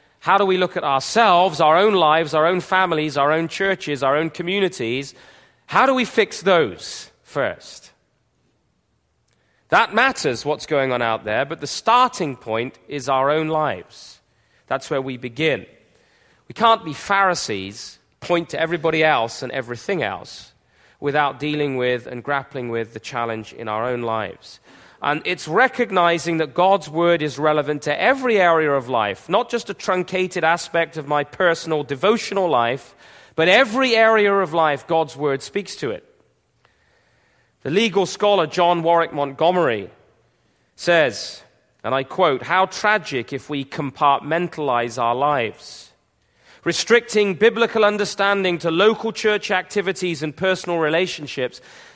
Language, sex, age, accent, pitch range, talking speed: English, male, 30-49, British, 140-190 Hz, 145 wpm